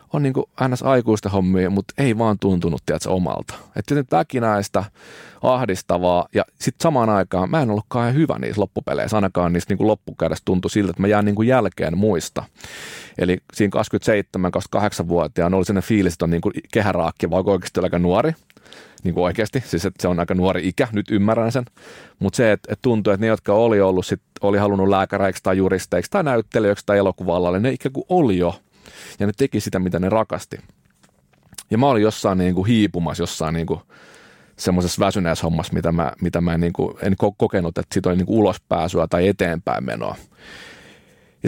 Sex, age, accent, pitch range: male, 30-49, native, 90-110 Hz